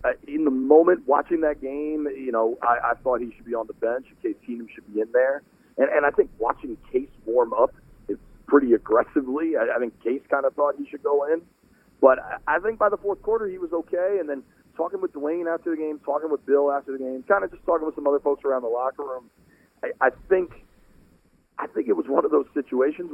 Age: 40-59